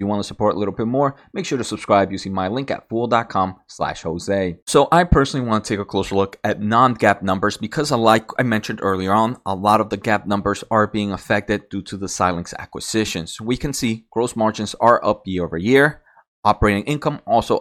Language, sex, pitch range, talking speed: English, male, 95-115 Hz, 220 wpm